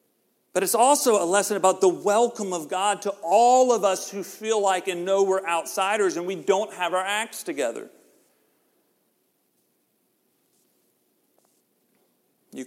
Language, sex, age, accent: English, male, 40-59, American